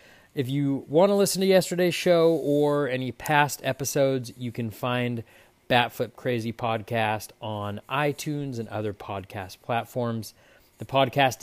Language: English